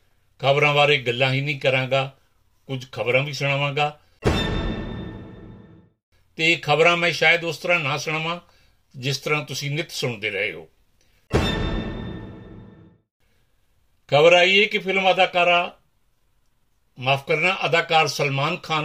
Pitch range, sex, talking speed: 125-160 Hz, male, 115 wpm